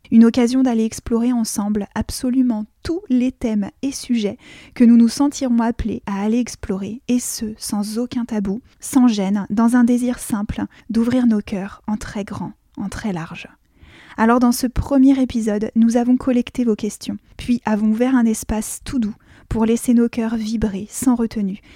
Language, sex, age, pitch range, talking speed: French, female, 20-39, 210-240 Hz, 175 wpm